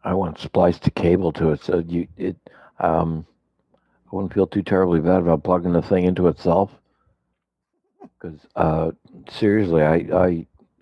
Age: 60-79